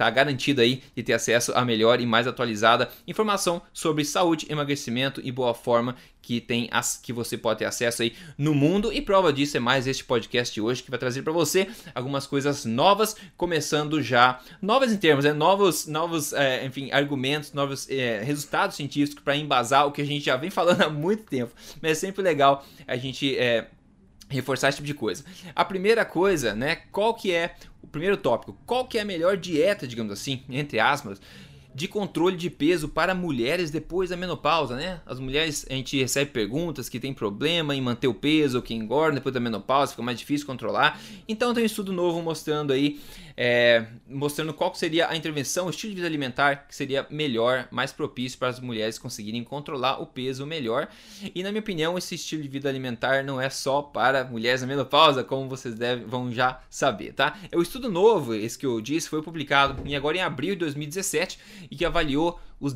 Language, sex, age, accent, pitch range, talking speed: Portuguese, male, 20-39, Brazilian, 130-170 Hz, 195 wpm